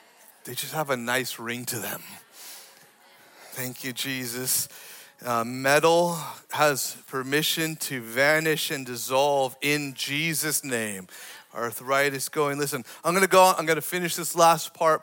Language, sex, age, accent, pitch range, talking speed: English, male, 30-49, American, 130-185 Hz, 150 wpm